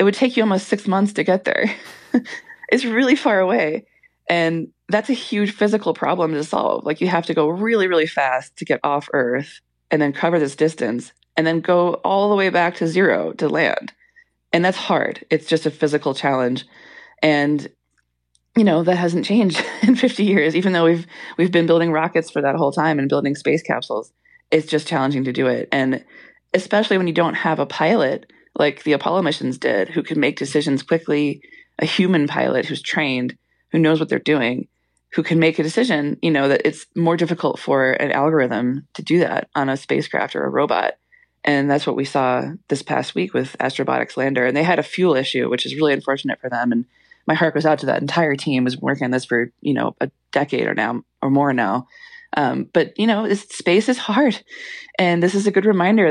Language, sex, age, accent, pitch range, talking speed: English, female, 20-39, American, 140-195 Hz, 215 wpm